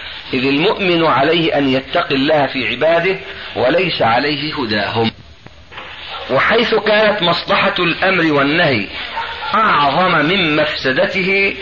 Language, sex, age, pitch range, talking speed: Arabic, male, 40-59, 130-175 Hz, 100 wpm